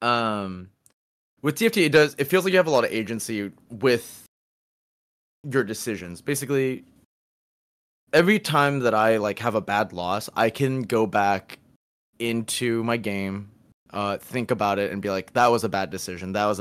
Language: English